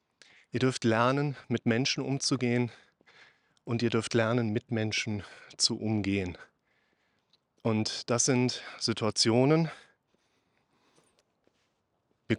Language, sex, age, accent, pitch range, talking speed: German, male, 30-49, German, 115-135 Hz, 90 wpm